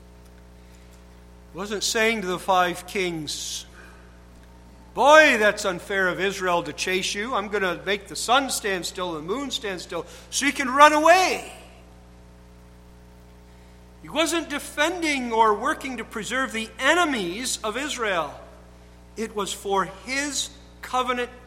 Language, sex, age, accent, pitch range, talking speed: English, male, 50-69, American, 170-275 Hz, 135 wpm